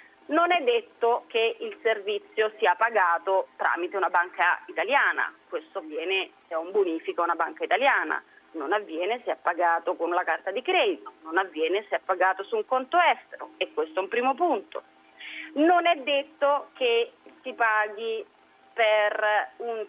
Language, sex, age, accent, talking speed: Italian, female, 30-49, native, 165 wpm